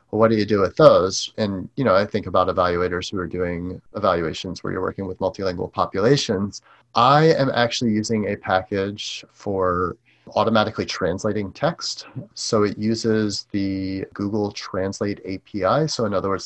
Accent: American